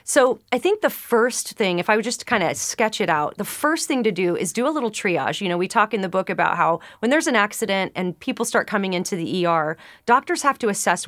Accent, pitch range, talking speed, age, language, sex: American, 180-235 Hz, 265 wpm, 30-49, English, female